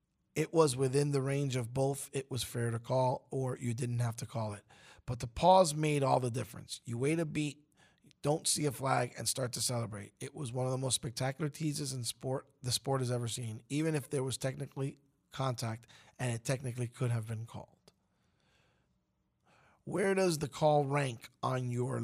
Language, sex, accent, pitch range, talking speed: English, male, American, 120-145 Hz, 195 wpm